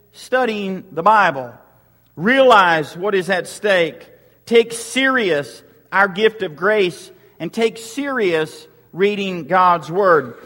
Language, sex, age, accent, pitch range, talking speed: English, male, 50-69, American, 175-230 Hz, 115 wpm